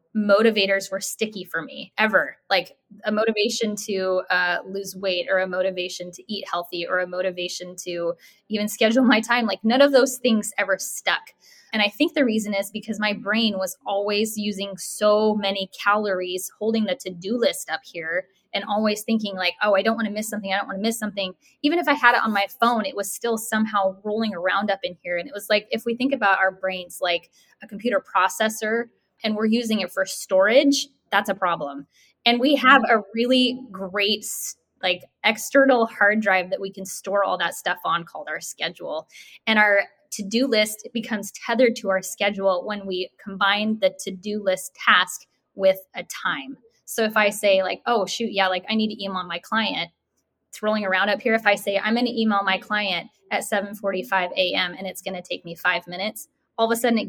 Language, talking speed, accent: English, 205 wpm, American